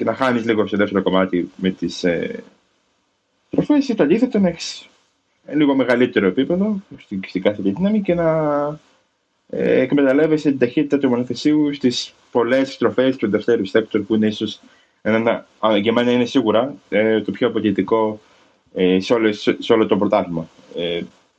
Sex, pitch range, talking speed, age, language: male, 105-140 Hz, 130 wpm, 20-39, Greek